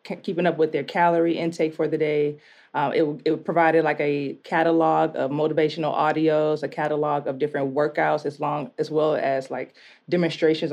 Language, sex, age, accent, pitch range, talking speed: English, female, 20-39, American, 145-170 Hz, 175 wpm